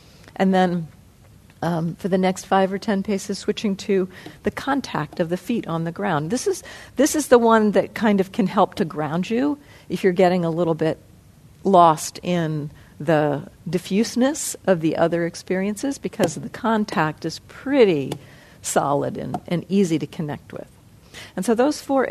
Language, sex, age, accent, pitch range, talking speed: English, female, 50-69, American, 160-200 Hz, 170 wpm